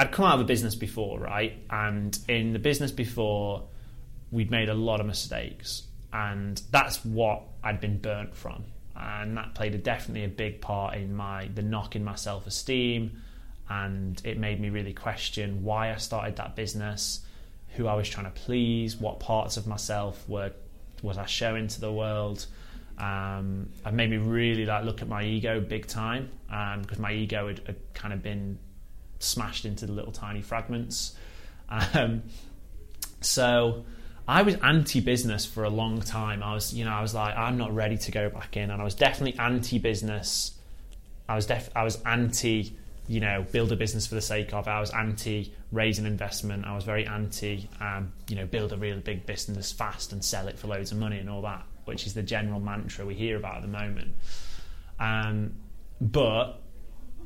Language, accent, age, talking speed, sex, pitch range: English, British, 20-39, 190 wpm, male, 100-110 Hz